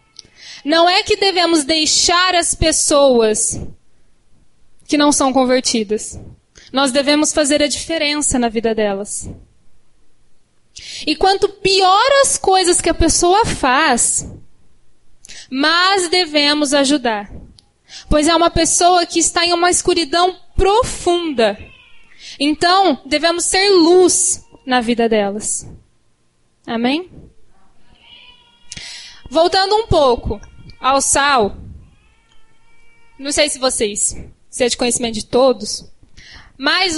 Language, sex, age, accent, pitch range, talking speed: English, female, 10-29, Brazilian, 260-345 Hz, 105 wpm